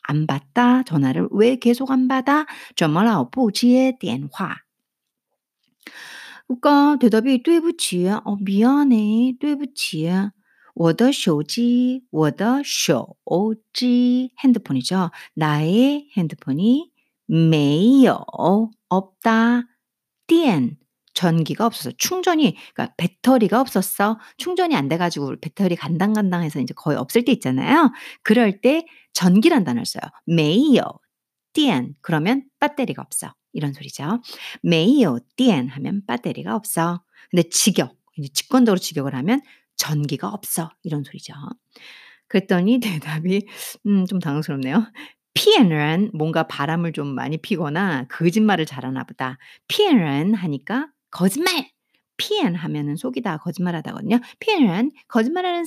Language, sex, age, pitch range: Korean, female, 50-69, 165-255 Hz